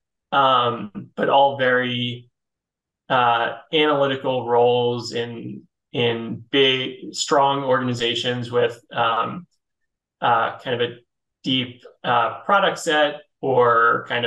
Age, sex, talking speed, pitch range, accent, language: 20-39, male, 100 wpm, 120-130 Hz, American, English